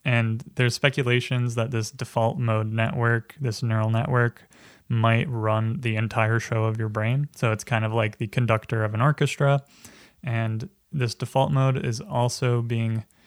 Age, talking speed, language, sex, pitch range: 20-39, 165 wpm, English, male, 115-130 Hz